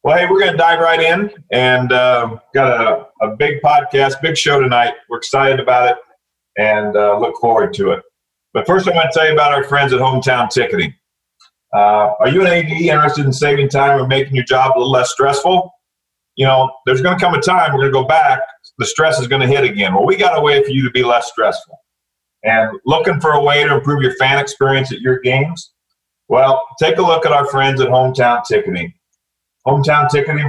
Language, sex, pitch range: English, male, 130-160 Hz